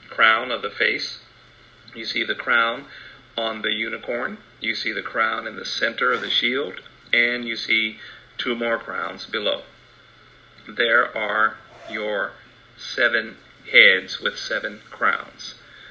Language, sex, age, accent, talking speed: English, male, 40-59, American, 135 wpm